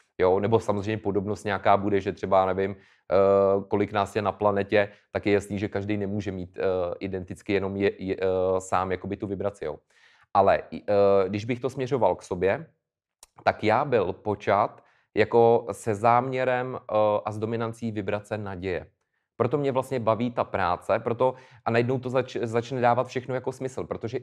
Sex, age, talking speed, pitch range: male, 30-49, 160 wpm, 105-125 Hz